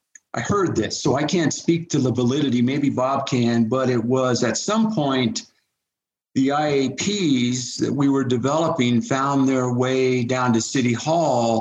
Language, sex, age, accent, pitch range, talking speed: English, male, 50-69, American, 120-140 Hz, 165 wpm